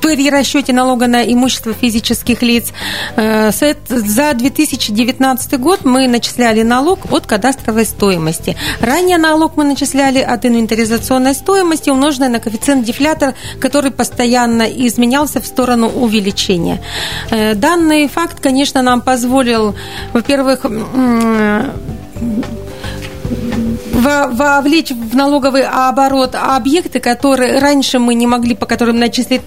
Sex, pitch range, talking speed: female, 230-280 Hz, 105 wpm